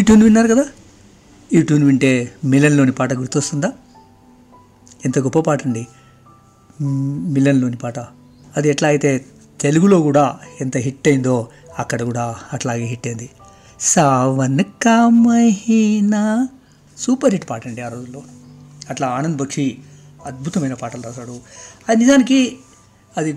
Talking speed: 110 wpm